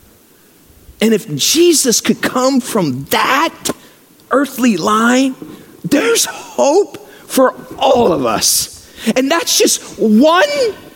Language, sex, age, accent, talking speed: English, male, 50-69, American, 105 wpm